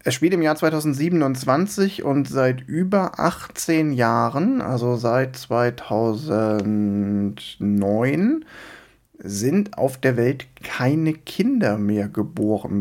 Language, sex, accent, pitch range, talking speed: German, male, German, 115-155 Hz, 100 wpm